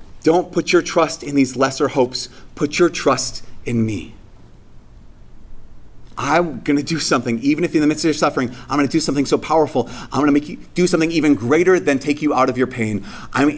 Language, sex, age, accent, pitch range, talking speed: English, male, 30-49, American, 125-165 Hz, 220 wpm